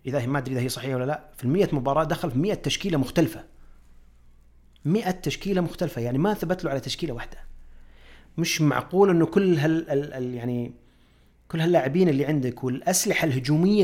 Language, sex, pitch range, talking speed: Arabic, male, 130-190 Hz, 180 wpm